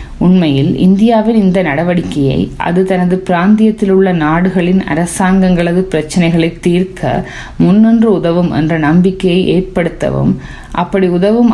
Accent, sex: native, female